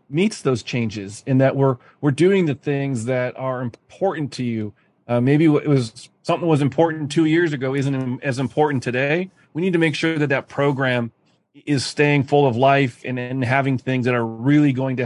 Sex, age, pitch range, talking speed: male, 30-49, 125-145 Hz, 205 wpm